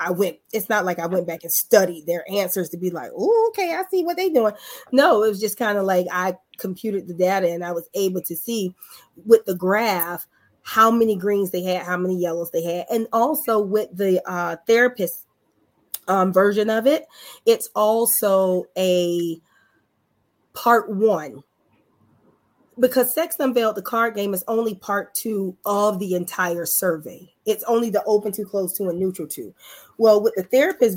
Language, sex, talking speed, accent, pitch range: English, female, 185 wpm, American, 180-225 Hz